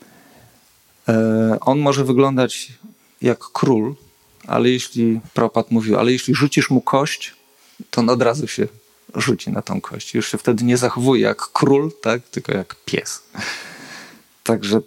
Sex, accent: male, native